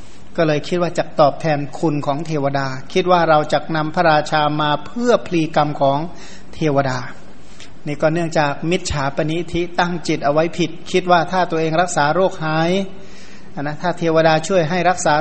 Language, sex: Thai, male